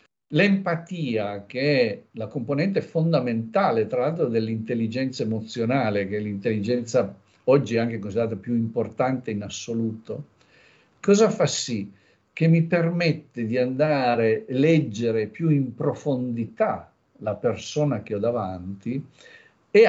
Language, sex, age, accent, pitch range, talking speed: Italian, male, 50-69, native, 115-155 Hz, 120 wpm